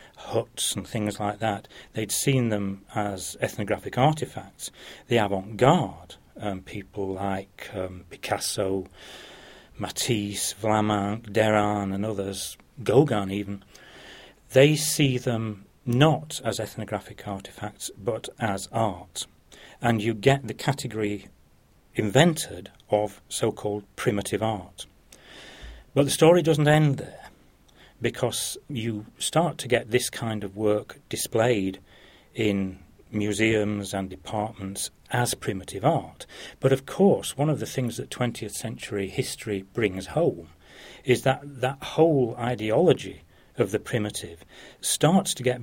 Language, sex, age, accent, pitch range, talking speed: English, male, 40-59, British, 100-125 Hz, 120 wpm